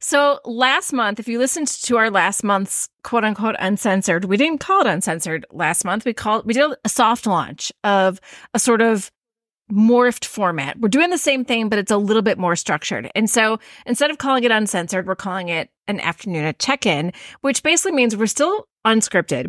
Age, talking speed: 30-49, 195 wpm